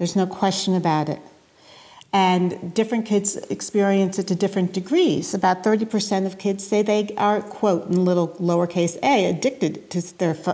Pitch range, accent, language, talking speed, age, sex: 175-240 Hz, American, English, 160 wpm, 60-79, female